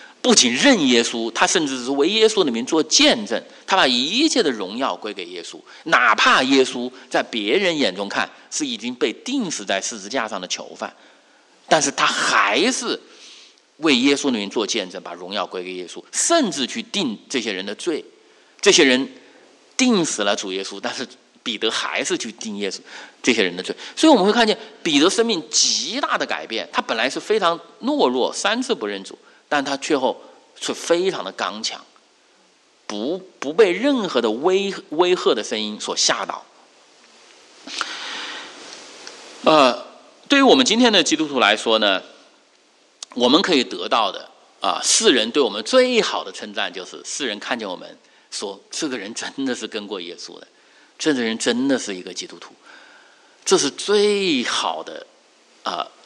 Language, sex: English, male